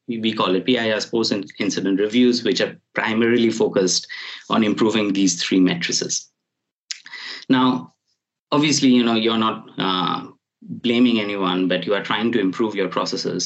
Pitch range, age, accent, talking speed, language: 90-115 Hz, 20-39, Indian, 145 wpm, English